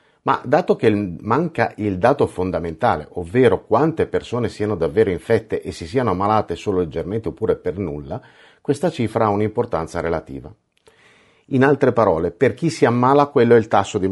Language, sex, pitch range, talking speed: Italian, male, 90-120 Hz, 165 wpm